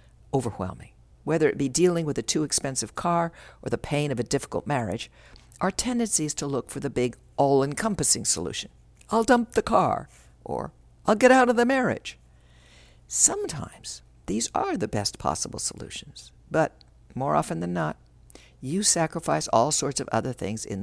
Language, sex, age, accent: English, female, 60-79, American